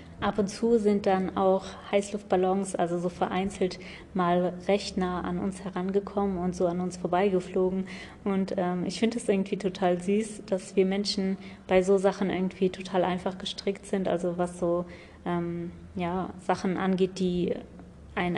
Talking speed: 155 wpm